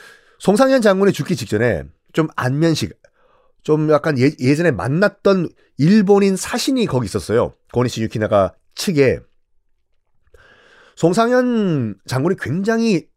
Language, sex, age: Korean, male, 40-59